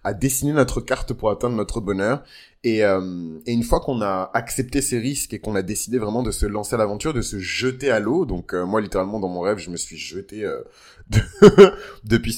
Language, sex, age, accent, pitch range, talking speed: French, male, 20-39, French, 95-125 Hz, 230 wpm